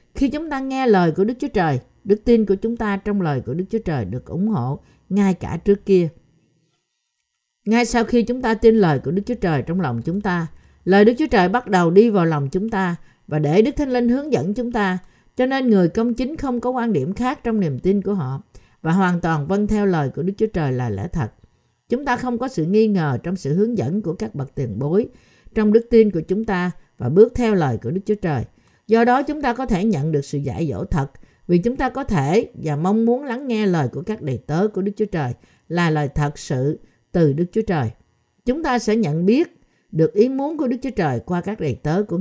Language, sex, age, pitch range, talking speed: Vietnamese, female, 50-69, 155-230 Hz, 250 wpm